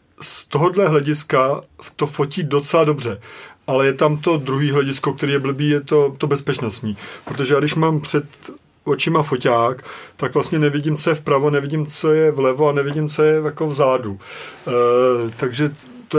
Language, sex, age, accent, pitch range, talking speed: Czech, male, 40-59, native, 135-155 Hz, 175 wpm